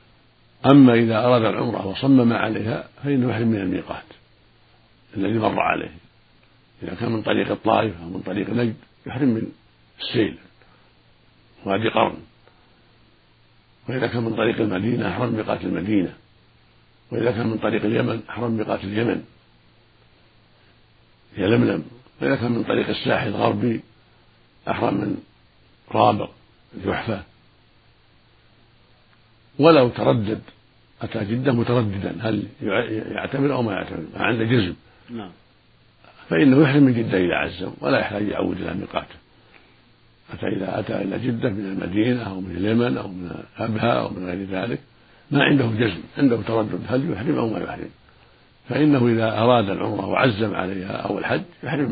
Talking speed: 130 wpm